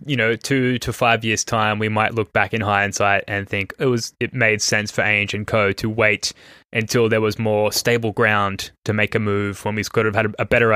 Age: 10-29